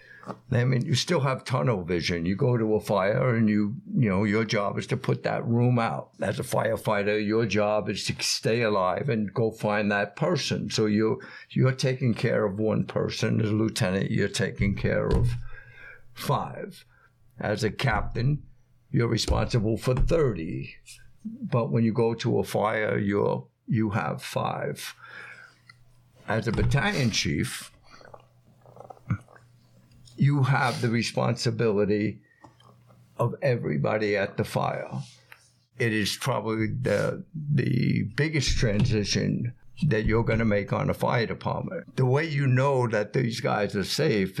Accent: American